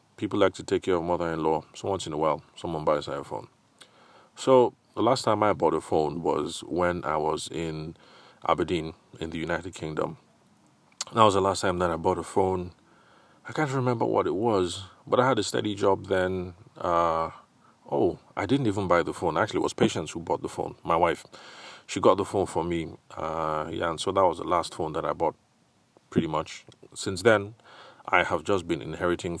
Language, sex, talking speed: English, male, 205 wpm